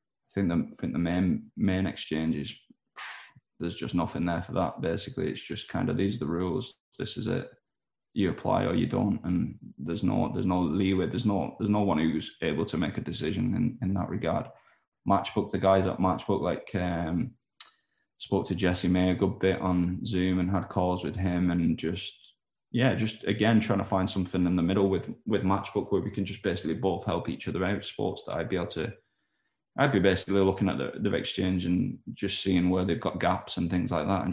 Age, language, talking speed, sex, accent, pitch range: 20-39, English, 215 wpm, male, British, 90-100 Hz